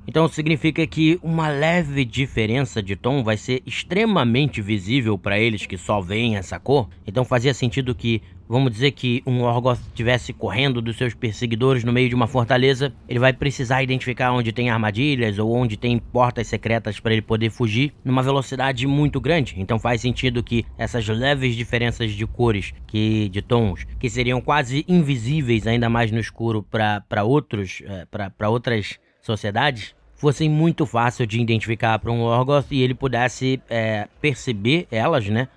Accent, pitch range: Brazilian, 110-130 Hz